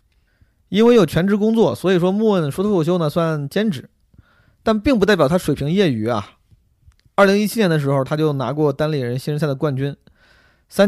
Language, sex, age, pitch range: Chinese, male, 20-39, 130-175 Hz